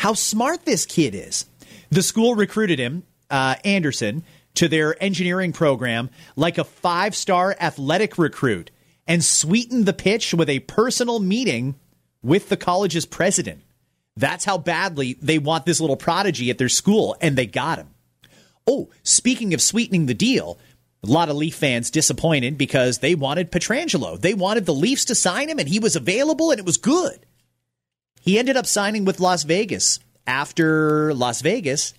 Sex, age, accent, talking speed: male, 30-49, American, 165 wpm